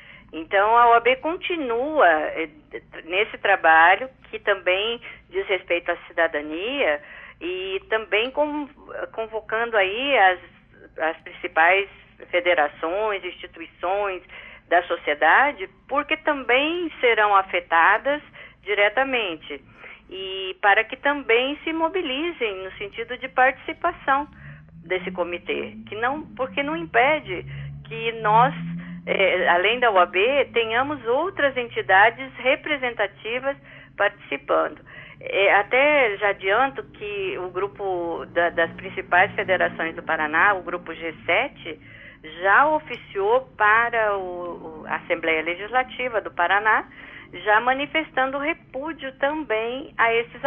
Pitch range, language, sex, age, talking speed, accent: 175-265 Hz, Portuguese, female, 50-69, 100 wpm, Brazilian